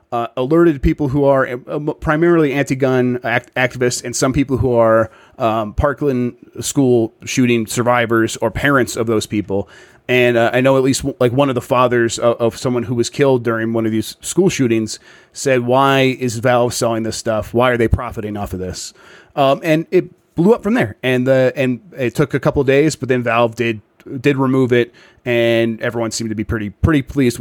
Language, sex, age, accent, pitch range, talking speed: English, male, 30-49, American, 115-140 Hz, 195 wpm